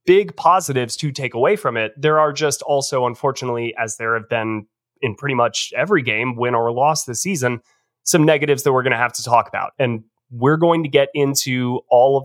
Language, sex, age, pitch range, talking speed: English, male, 20-39, 120-150 Hz, 215 wpm